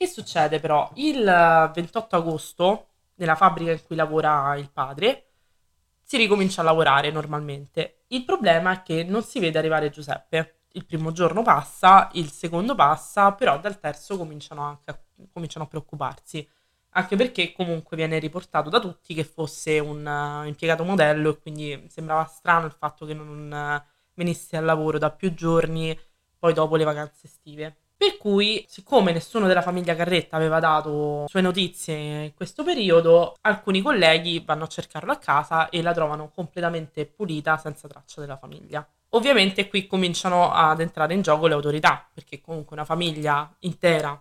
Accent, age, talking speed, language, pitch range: native, 20-39, 155 wpm, Italian, 155-175 Hz